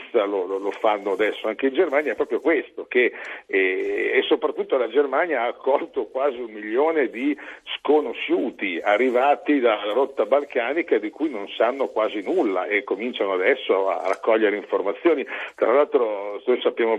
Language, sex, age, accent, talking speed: Italian, male, 50-69, native, 155 wpm